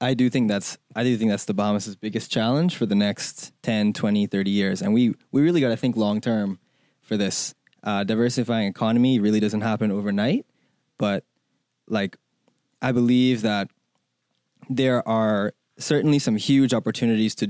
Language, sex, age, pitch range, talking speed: English, male, 20-39, 105-130 Hz, 165 wpm